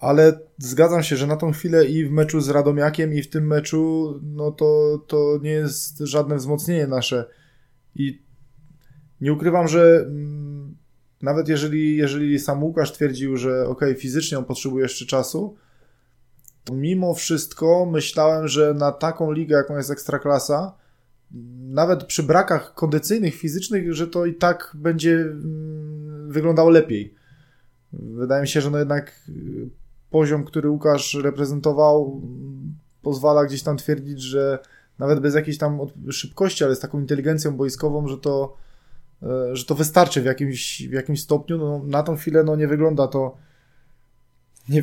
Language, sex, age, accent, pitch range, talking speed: Polish, male, 20-39, native, 135-155 Hz, 150 wpm